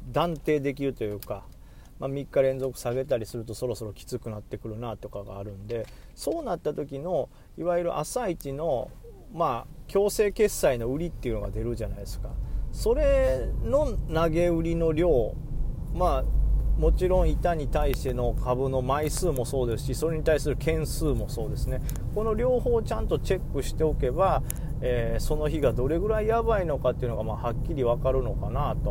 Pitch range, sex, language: 125-165 Hz, male, Japanese